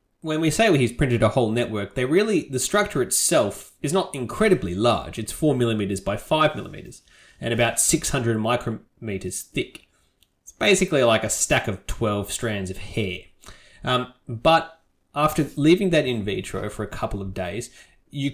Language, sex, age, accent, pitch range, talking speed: English, male, 20-39, Australian, 105-135 Hz, 165 wpm